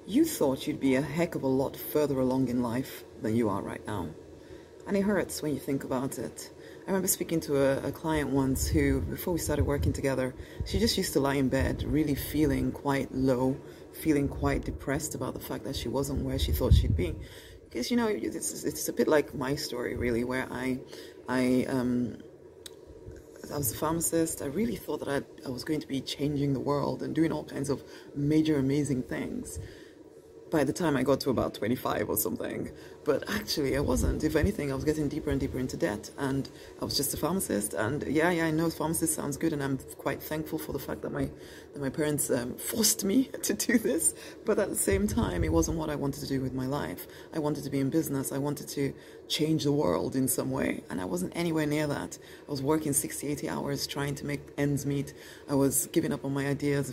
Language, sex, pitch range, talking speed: English, female, 130-155 Hz, 225 wpm